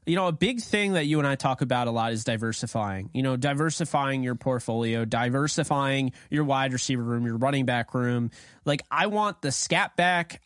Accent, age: American, 20-39